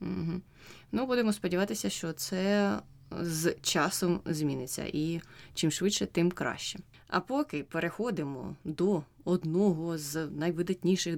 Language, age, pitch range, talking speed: Ukrainian, 20-39, 155-200 Hz, 115 wpm